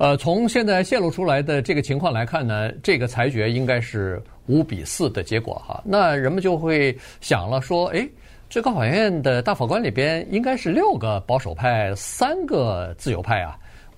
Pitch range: 110-160 Hz